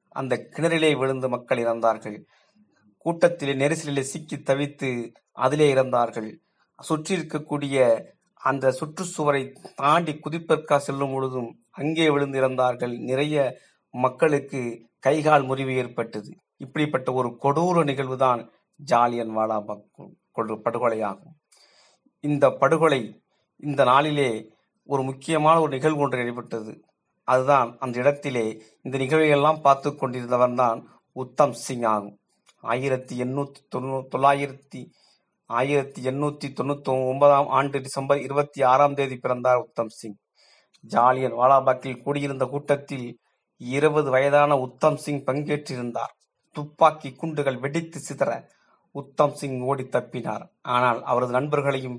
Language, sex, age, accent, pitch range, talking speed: Tamil, male, 30-49, native, 125-145 Hz, 100 wpm